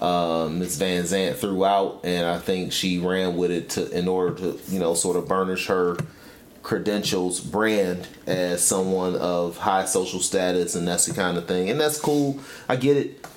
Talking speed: 195 wpm